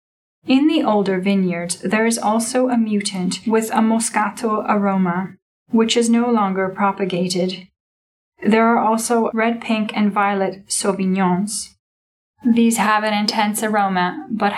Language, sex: English, female